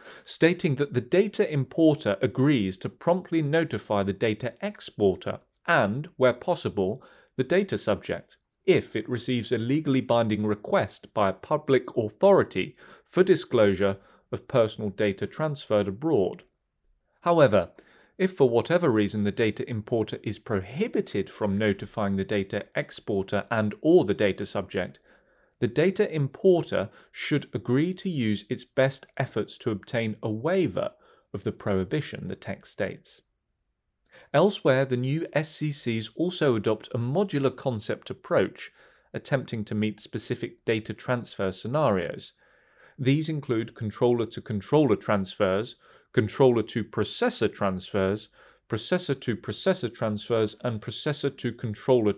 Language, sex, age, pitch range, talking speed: English, male, 30-49, 105-145 Hz, 120 wpm